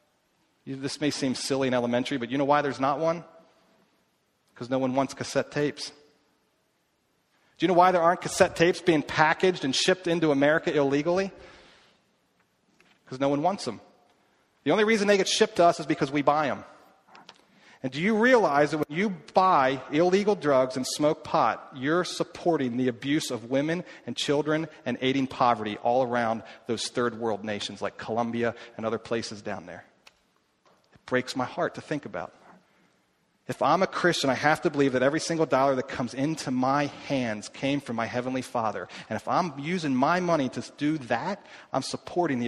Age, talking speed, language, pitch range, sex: 40-59, 185 wpm, English, 130-165 Hz, male